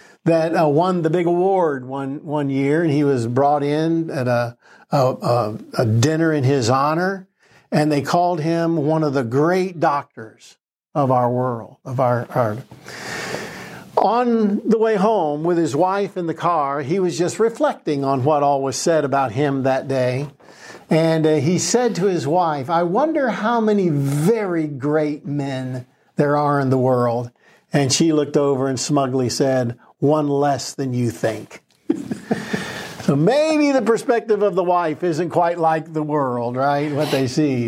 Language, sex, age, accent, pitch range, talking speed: English, male, 60-79, American, 135-175 Hz, 170 wpm